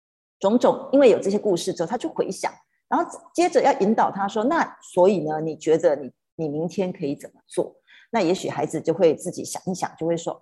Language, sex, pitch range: Chinese, female, 170-265 Hz